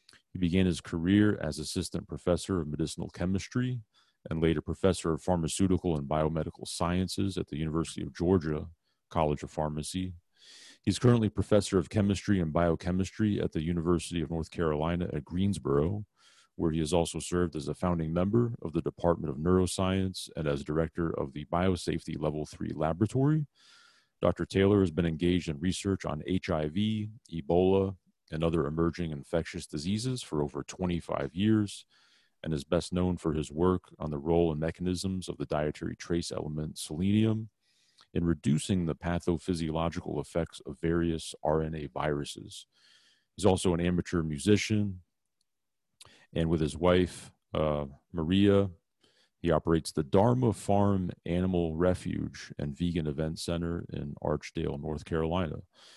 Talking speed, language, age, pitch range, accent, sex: 145 wpm, English, 40-59, 80-95 Hz, American, male